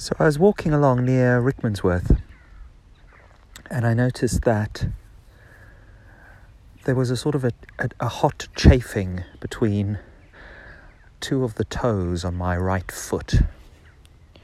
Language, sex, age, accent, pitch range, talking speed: English, male, 40-59, British, 90-125 Hz, 125 wpm